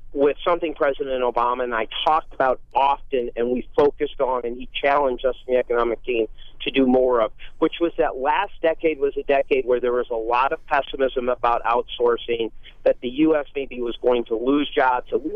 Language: English